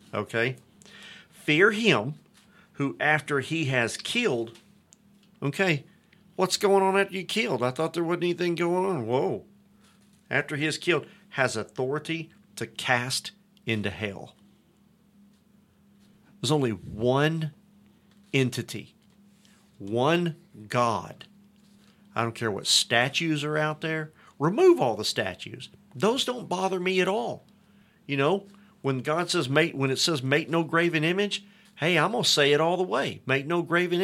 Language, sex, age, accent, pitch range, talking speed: English, male, 50-69, American, 140-200 Hz, 145 wpm